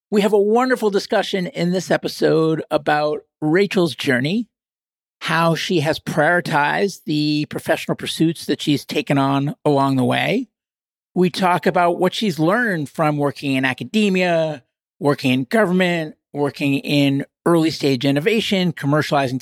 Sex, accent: male, American